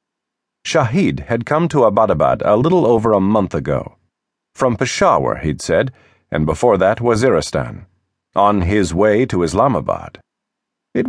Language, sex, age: English, male, 40-59